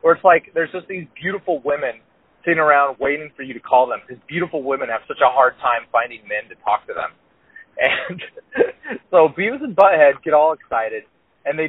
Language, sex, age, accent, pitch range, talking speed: English, male, 30-49, American, 150-205 Hz, 205 wpm